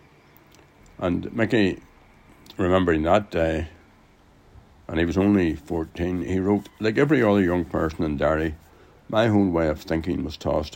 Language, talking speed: English, 145 wpm